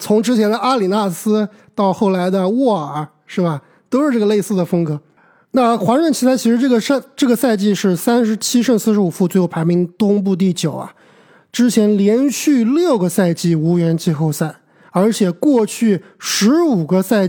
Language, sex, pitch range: Chinese, male, 175-230 Hz